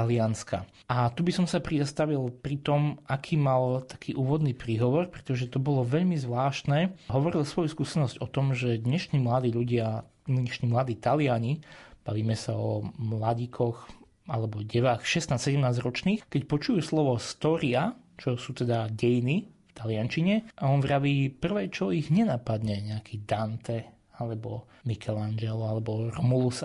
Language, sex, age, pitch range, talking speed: Slovak, male, 30-49, 120-160 Hz, 135 wpm